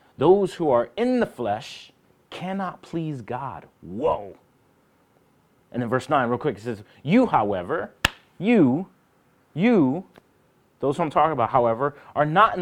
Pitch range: 125-165 Hz